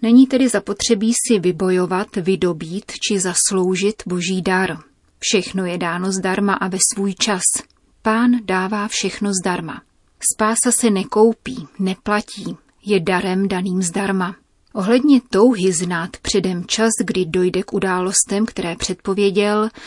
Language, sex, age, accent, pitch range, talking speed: Czech, female, 30-49, native, 185-215 Hz, 125 wpm